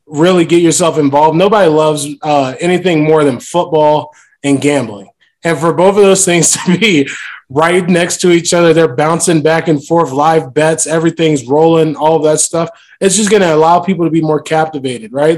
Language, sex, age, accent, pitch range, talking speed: English, male, 20-39, American, 145-170 Hz, 195 wpm